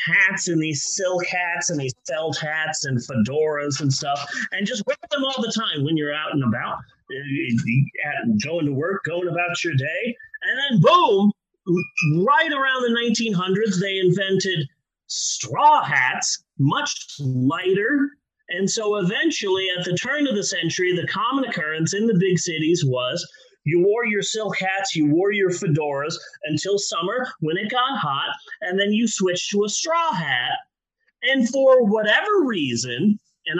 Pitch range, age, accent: 165-250 Hz, 30-49, American